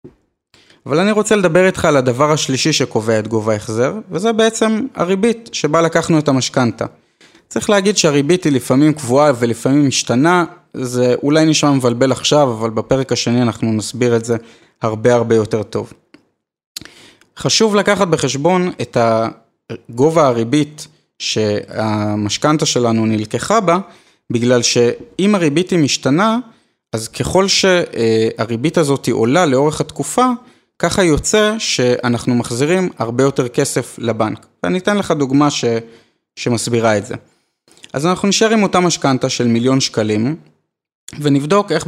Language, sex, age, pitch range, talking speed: Hebrew, male, 30-49, 120-170 Hz, 130 wpm